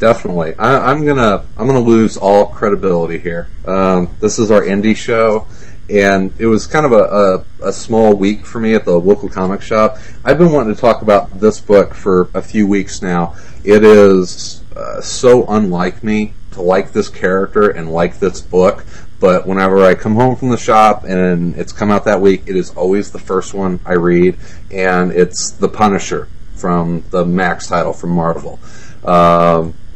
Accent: American